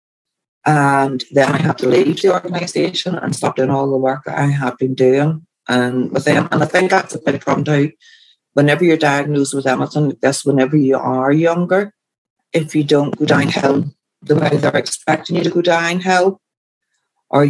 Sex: female